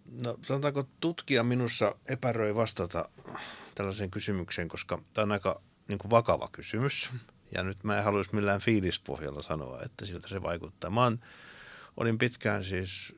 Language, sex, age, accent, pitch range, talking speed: Finnish, male, 60-79, native, 85-115 Hz, 135 wpm